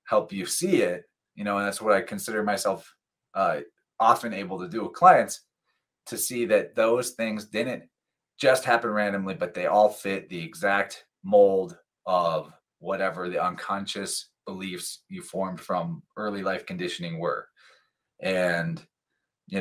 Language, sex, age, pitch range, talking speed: English, male, 20-39, 95-120 Hz, 150 wpm